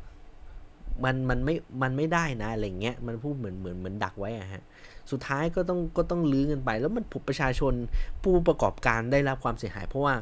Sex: male